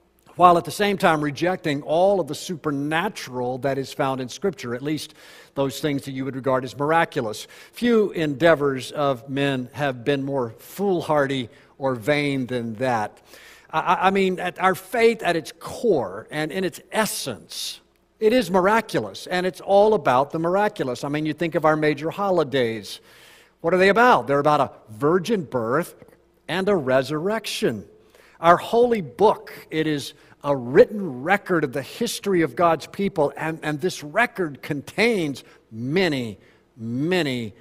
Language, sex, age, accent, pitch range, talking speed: English, male, 50-69, American, 135-180 Hz, 160 wpm